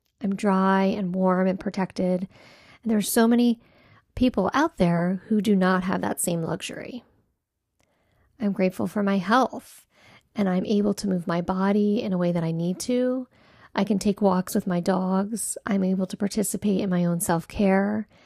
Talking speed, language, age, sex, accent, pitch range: 185 wpm, English, 40-59, female, American, 185-215 Hz